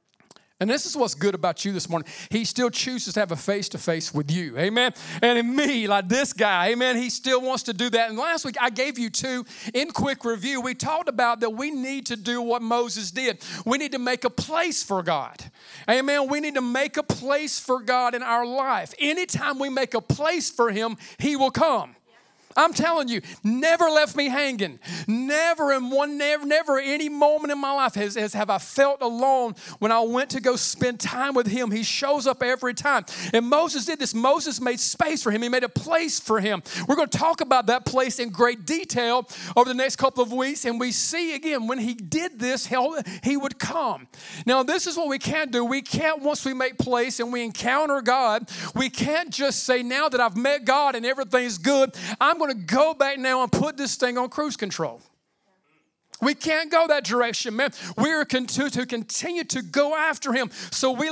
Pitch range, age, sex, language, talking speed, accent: 230-285 Hz, 40-59, male, English, 220 wpm, American